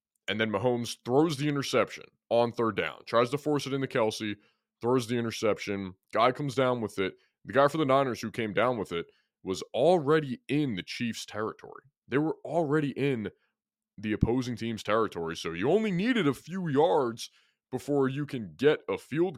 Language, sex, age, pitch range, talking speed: English, male, 20-39, 115-170 Hz, 185 wpm